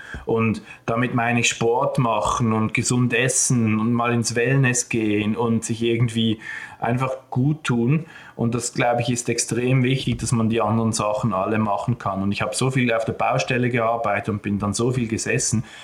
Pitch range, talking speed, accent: 110-120 Hz, 190 wpm, Austrian